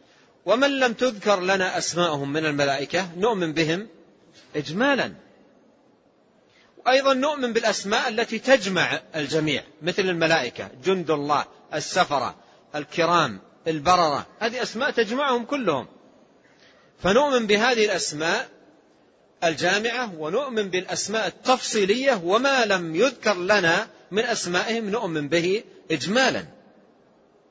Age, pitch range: 40-59, 170-245 Hz